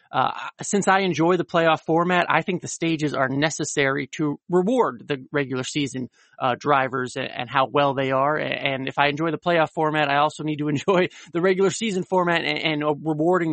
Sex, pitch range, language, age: male, 145-170 Hz, English, 30-49